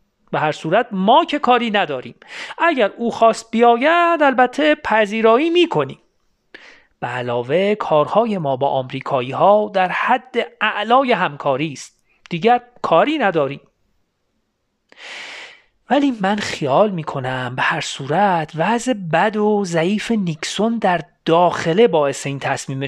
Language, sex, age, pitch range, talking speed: Persian, male, 40-59, 150-225 Hz, 120 wpm